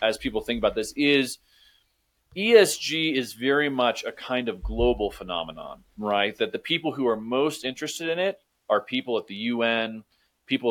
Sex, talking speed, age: male, 175 wpm, 30-49